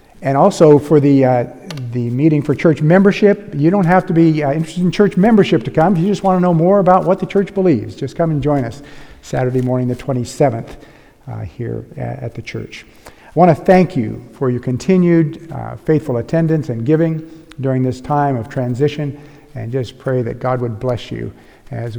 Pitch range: 120-160 Hz